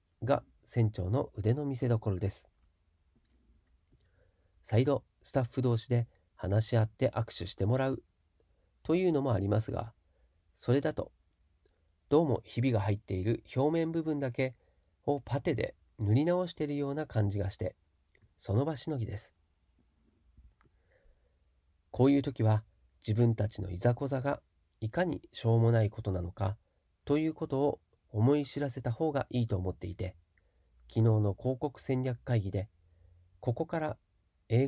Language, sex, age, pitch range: Japanese, male, 40-59, 90-130 Hz